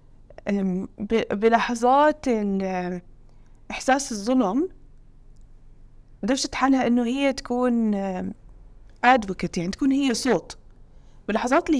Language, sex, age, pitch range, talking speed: English, female, 20-39, 195-285 Hz, 75 wpm